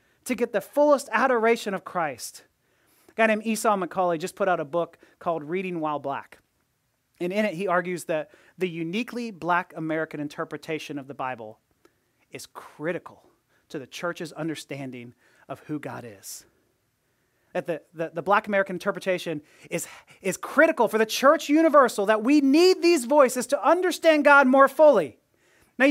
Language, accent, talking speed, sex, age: English, American, 160 wpm, male, 30-49